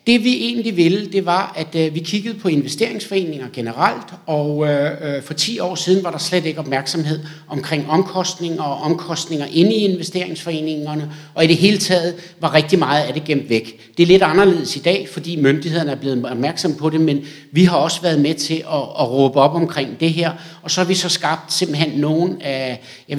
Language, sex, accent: Danish, male, native